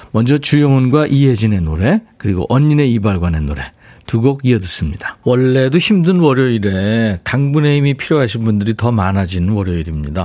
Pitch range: 100-140 Hz